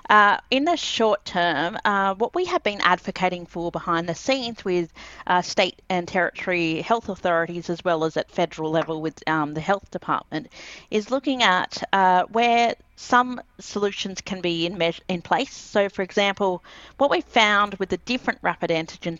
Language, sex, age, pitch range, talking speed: English, female, 40-59, 165-210 Hz, 180 wpm